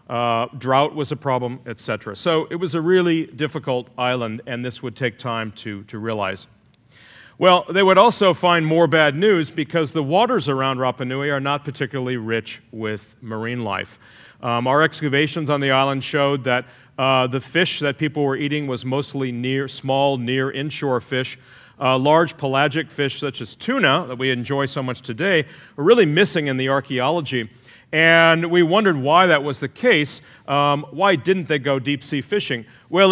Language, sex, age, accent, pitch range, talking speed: English, male, 40-59, American, 125-160 Hz, 175 wpm